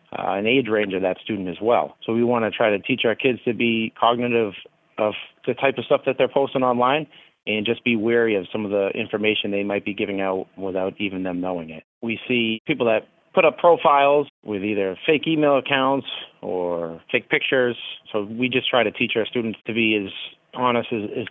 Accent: American